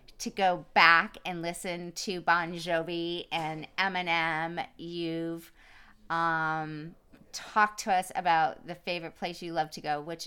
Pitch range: 155-175 Hz